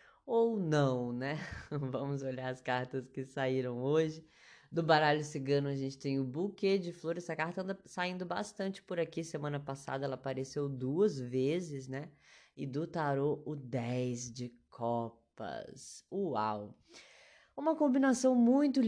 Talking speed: 145 wpm